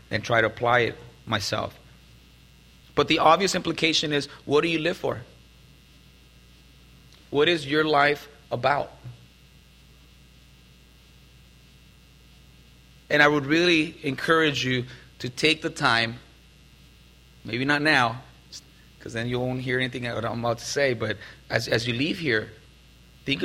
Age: 30-49